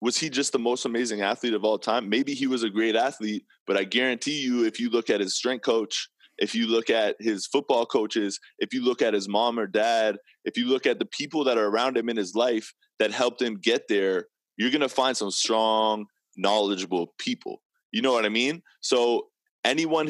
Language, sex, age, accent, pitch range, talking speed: English, male, 20-39, American, 100-130 Hz, 225 wpm